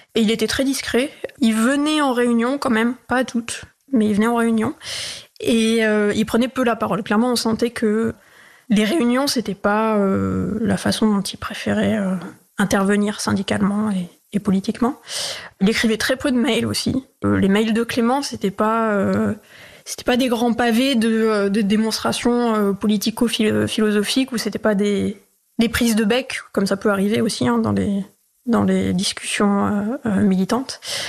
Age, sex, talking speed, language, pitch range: 20-39, female, 180 wpm, French, 210-245 Hz